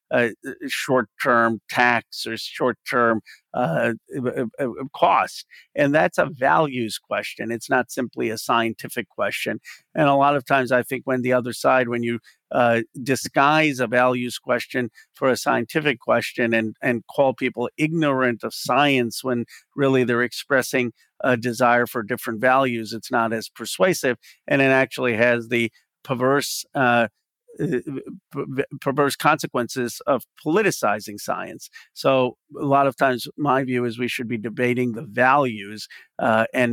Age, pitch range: 50-69, 120-135 Hz